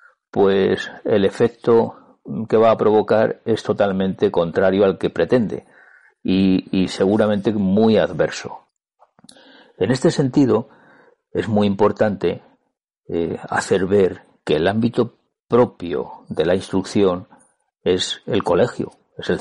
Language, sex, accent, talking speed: Spanish, male, Spanish, 120 wpm